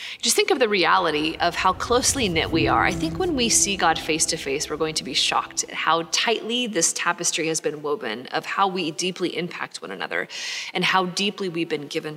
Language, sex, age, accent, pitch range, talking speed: English, female, 30-49, American, 160-185 Hz, 215 wpm